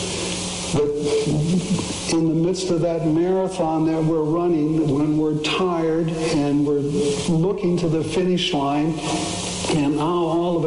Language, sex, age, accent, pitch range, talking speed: English, male, 60-79, American, 145-175 Hz, 135 wpm